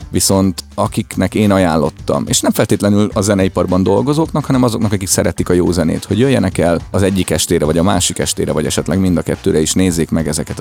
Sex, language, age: male, Hungarian, 30-49